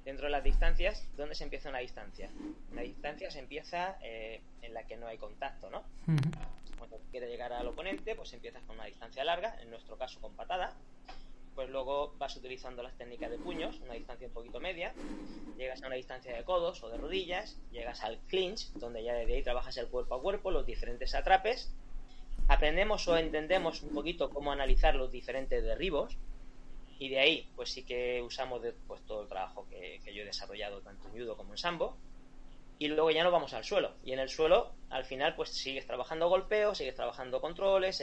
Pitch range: 130-175 Hz